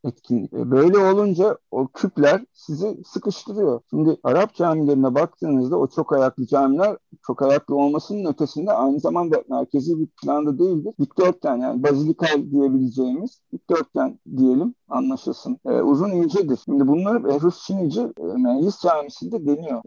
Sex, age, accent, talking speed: male, 50-69, native, 125 wpm